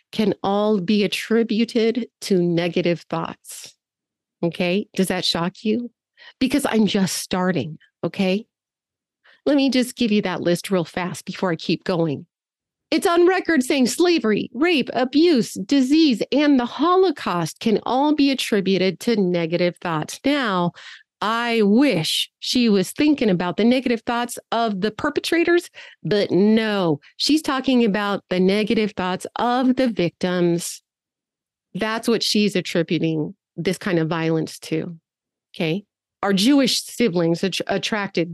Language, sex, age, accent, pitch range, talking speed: English, female, 40-59, American, 175-245 Hz, 135 wpm